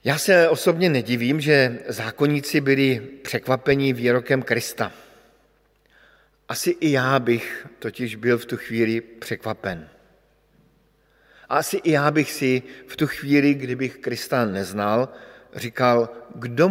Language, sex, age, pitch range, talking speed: Slovak, male, 50-69, 120-150 Hz, 120 wpm